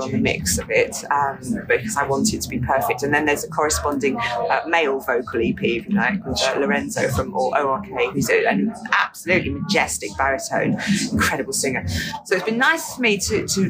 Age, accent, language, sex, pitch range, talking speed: 30-49, British, English, female, 170-225 Hz, 195 wpm